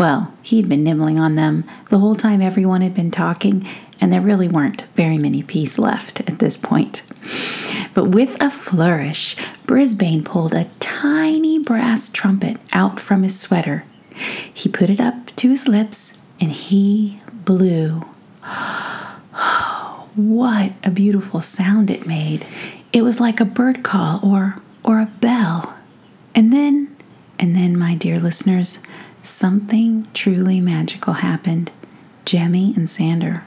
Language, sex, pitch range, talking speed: English, female, 175-230 Hz, 140 wpm